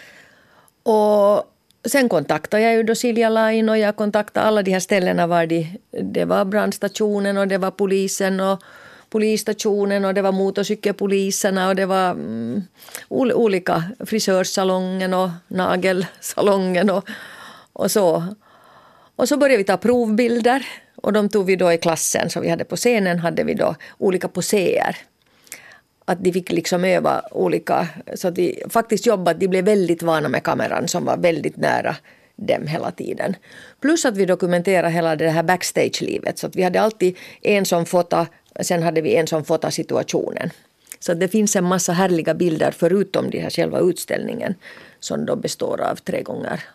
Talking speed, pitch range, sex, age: 165 wpm, 180-215 Hz, female, 40-59